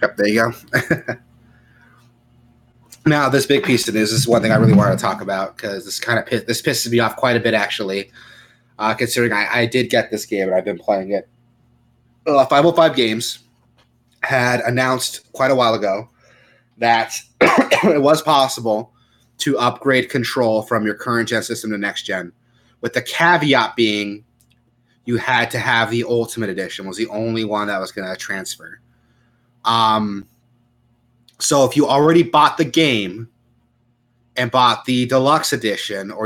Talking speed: 175 wpm